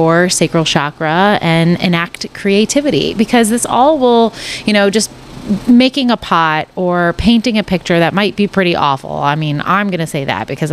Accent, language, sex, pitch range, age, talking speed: American, English, female, 160-195 Hz, 30-49, 180 wpm